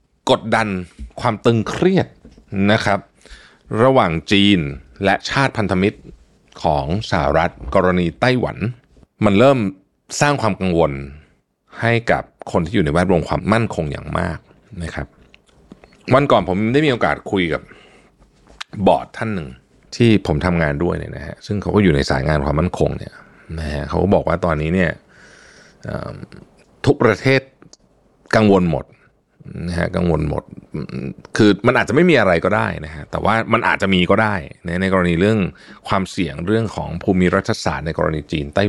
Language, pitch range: Thai, 80-110 Hz